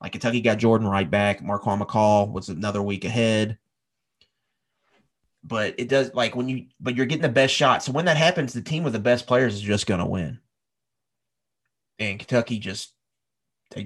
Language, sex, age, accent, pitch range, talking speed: English, male, 30-49, American, 105-120 Hz, 185 wpm